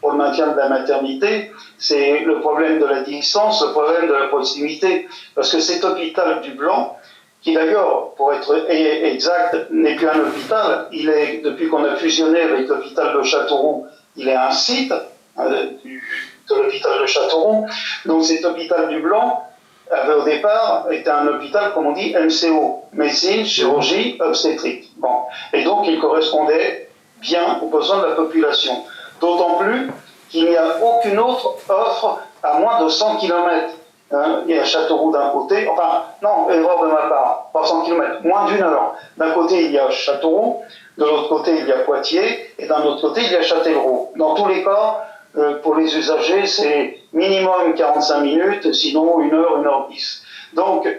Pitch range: 150-215 Hz